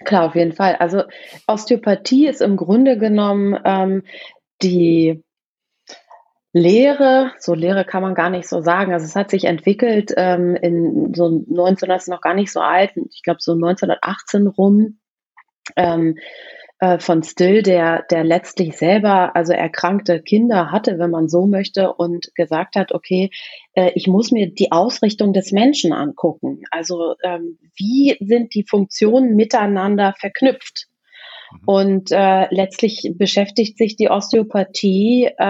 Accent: German